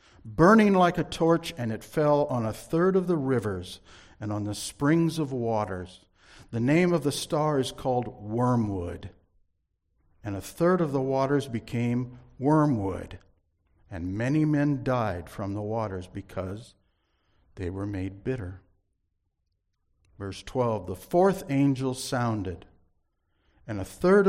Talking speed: 140 wpm